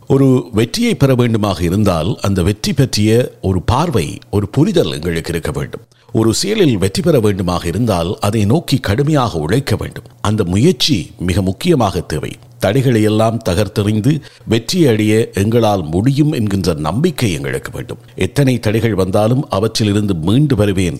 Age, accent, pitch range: 50-69, native, 95-135 Hz